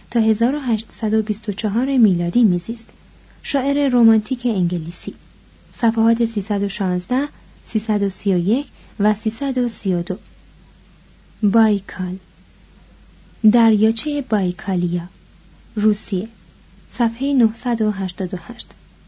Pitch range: 190-230 Hz